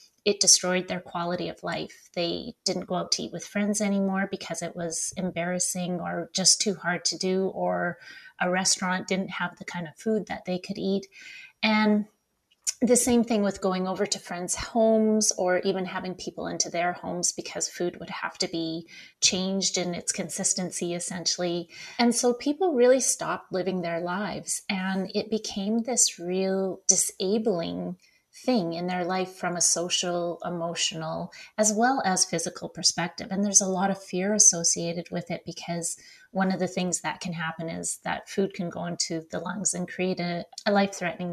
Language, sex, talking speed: English, female, 180 wpm